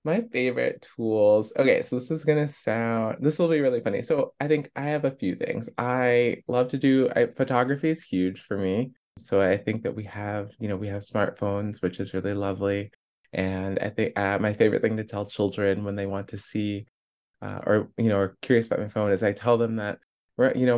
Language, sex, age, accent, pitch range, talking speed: English, male, 20-39, American, 100-125 Hz, 230 wpm